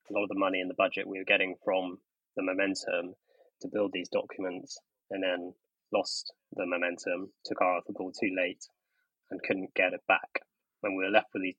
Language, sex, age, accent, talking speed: English, male, 20-39, British, 210 wpm